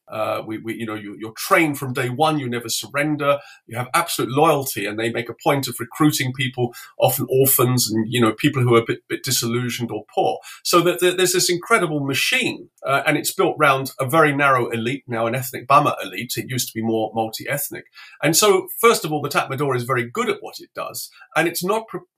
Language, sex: English, male